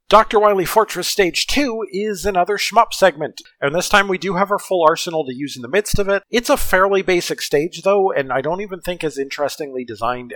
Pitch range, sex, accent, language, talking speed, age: 125-190 Hz, male, American, English, 225 wpm, 40-59